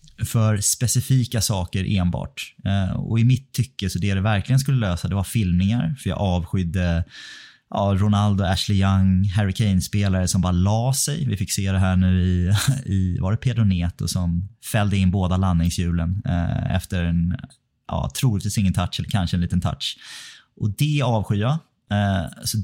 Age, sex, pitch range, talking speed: 30-49, male, 90-110 Hz, 170 wpm